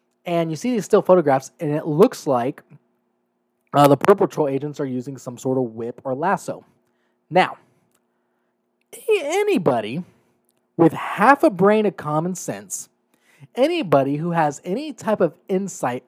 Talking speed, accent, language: 145 wpm, American, English